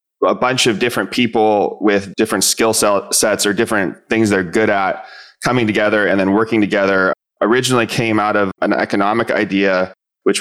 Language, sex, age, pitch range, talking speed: English, male, 20-39, 95-110 Hz, 165 wpm